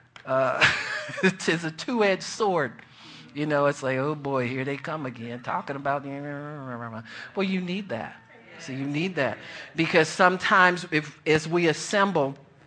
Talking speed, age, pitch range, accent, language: 145 wpm, 50-69, 130-160 Hz, American, English